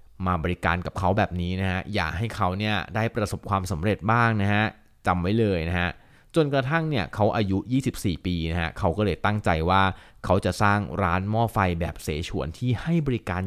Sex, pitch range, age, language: male, 90-115 Hz, 20-39, Thai